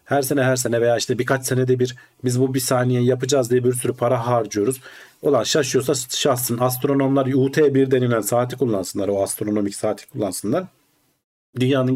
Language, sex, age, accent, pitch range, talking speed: Turkish, male, 40-59, native, 110-140 Hz, 160 wpm